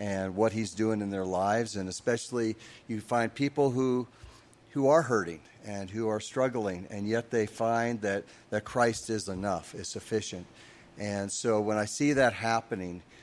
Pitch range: 105-120 Hz